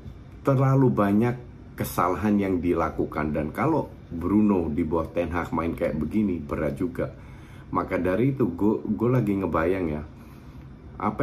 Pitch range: 80-105 Hz